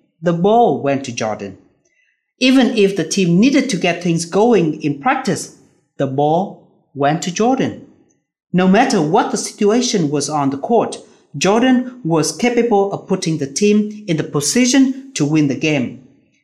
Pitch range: 140-205 Hz